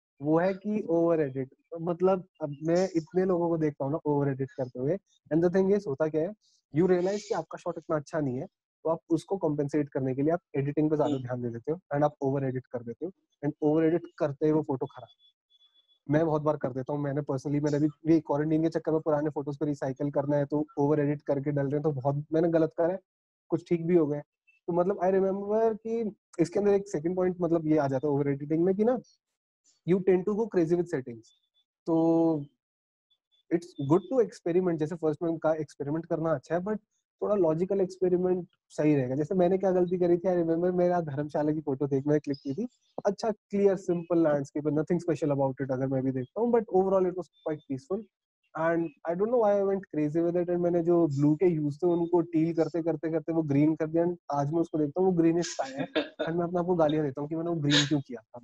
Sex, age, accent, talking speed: male, 20-39, native, 160 wpm